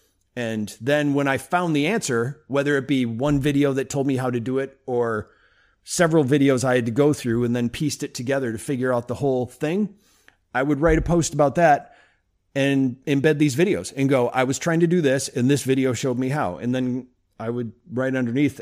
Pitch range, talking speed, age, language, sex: 125-160 Hz, 220 wpm, 40-59, English, male